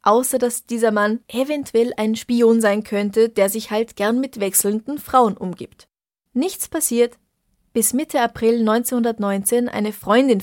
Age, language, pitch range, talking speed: 20-39, German, 205-245 Hz, 145 wpm